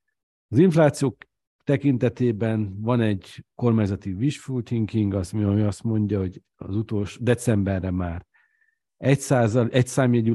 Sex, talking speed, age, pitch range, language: male, 100 wpm, 50-69, 95-110 Hz, Hungarian